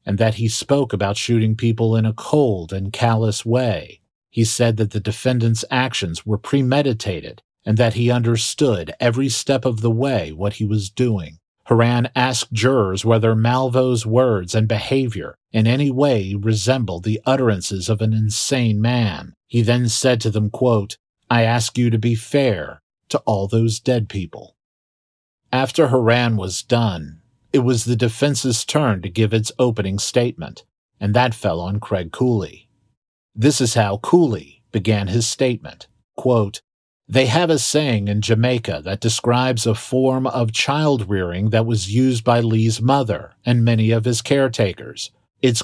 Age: 50-69